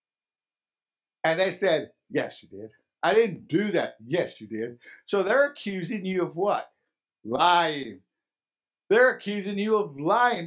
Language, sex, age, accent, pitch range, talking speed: English, male, 60-79, American, 175-235 Hz, 145 wpm